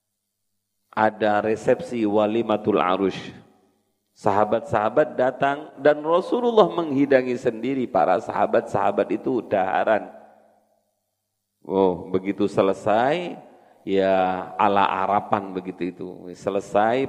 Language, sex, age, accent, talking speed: Indonesian, male, 40-59, native, 80 wpm